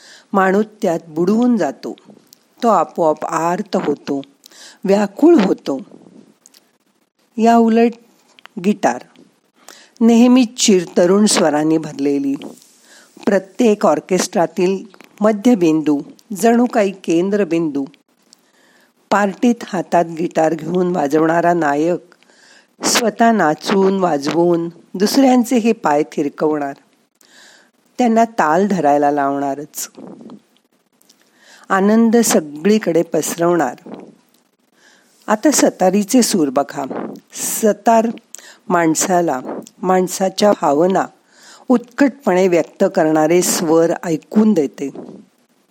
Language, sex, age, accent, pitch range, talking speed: Marathi, female, 50-69, native, 165-235 Hz, 65 wpm